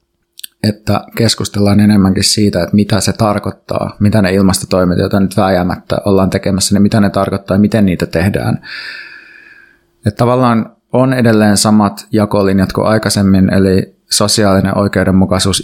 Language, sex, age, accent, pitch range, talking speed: Finnish, male, 20-39, native, 95-105 Hz, 135 wpm